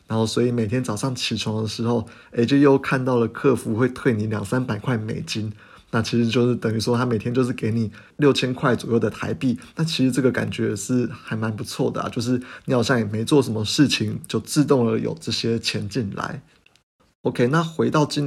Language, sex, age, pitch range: Chinese, male, 20-39, 110-130 Hz